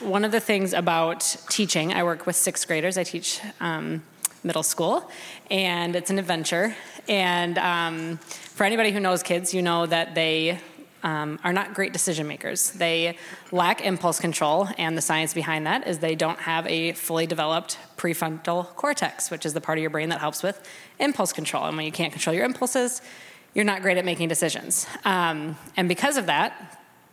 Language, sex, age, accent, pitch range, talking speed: English, female, 20-39, American, 160-185 Hz, 190 wpm